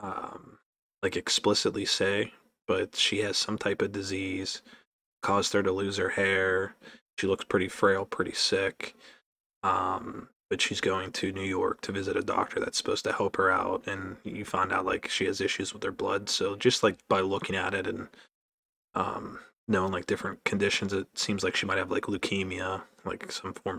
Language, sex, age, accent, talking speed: English, male, 20-39, American, 190 wpm